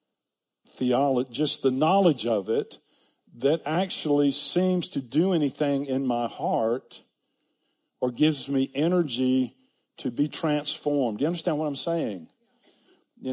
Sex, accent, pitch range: male, American, 125-165 Hz